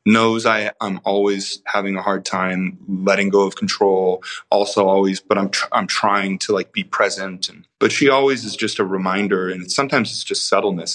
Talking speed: 180 wpm